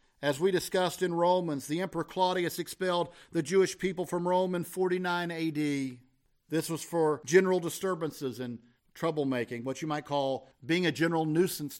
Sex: male